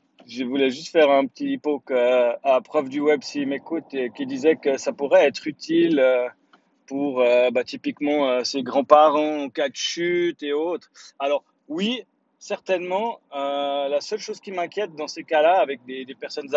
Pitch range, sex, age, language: 140-190 Hz, male, 30-49, French